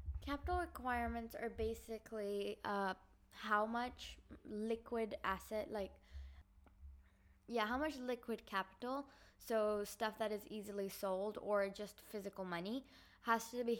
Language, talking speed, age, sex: English, 120 wpm, 10-29, female